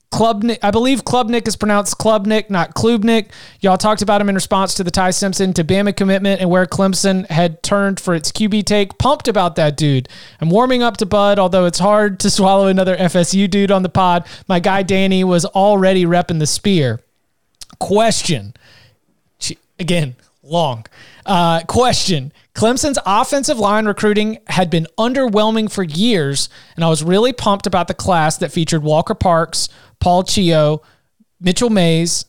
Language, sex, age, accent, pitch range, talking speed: English, male, 30-49, American, 175-215 Hz, 160 wpm